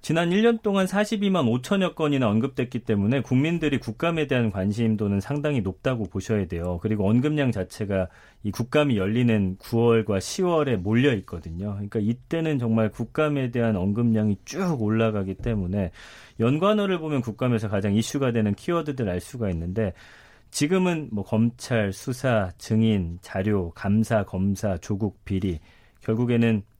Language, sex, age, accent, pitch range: Korean, male, 40-59, native, 100-135 Hz